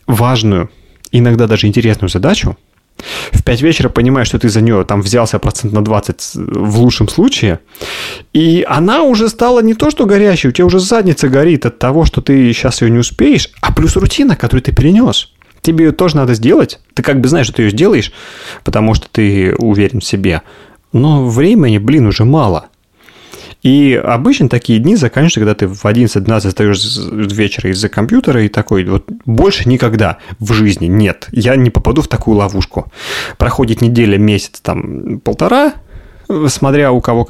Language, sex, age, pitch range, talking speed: Russian, male, 30-49, 100-130 Hz, 170 wpm